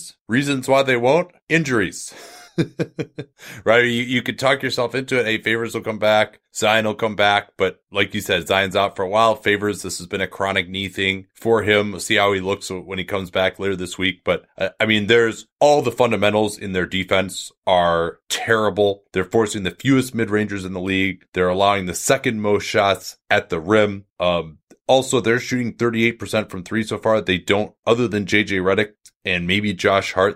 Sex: male